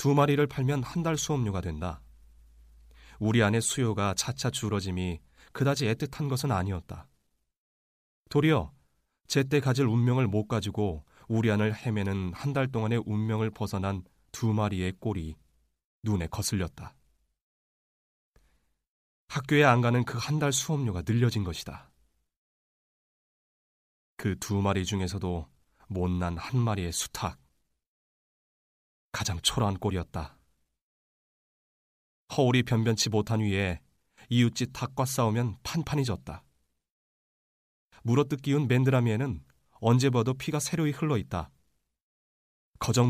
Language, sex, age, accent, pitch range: Korean, male, 30-49, native, 80-125 Hz